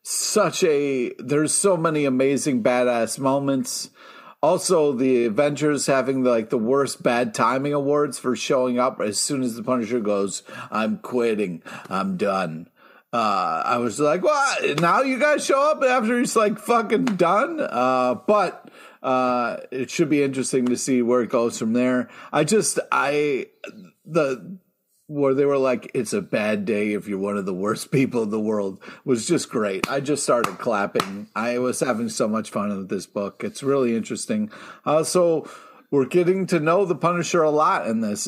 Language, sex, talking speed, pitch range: English, male, 180 wpm, 115-150 Hz